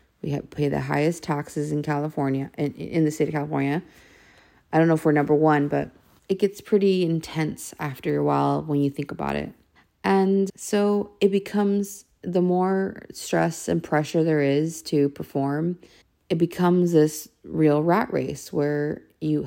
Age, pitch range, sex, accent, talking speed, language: 30-49, 140-165 Hz, female, American, 165 wpm, English